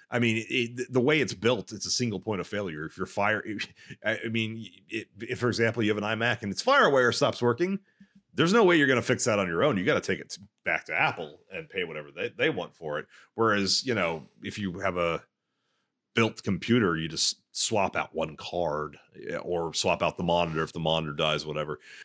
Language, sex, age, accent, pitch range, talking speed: English, male, 30-49, American, 90-115 Hz, 225 wpm